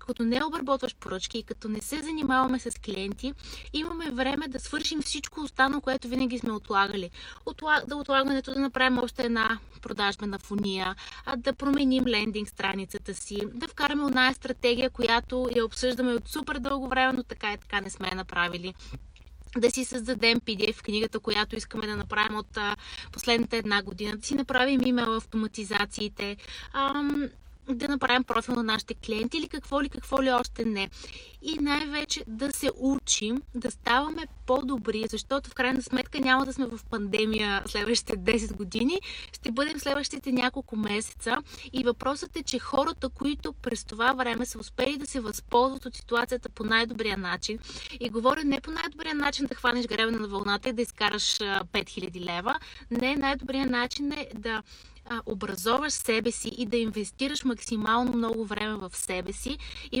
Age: 20-39